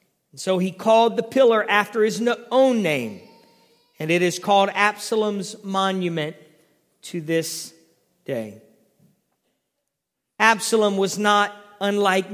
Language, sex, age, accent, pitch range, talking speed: English, male, 40-59, American, 180-230 Hz, 105 wpm